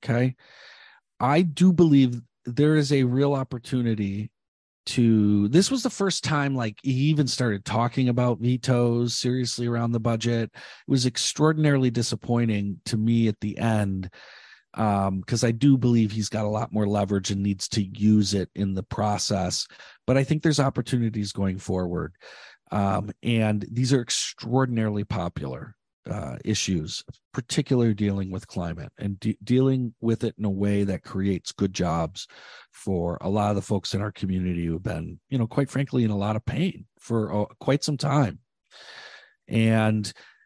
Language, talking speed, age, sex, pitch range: English, 165 wpm, 40-59, male, 105-135 Hz